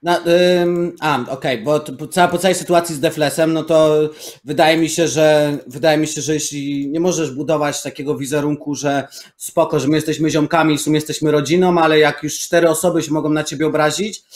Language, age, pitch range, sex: Polish, 30-49, 145-170 Hz, male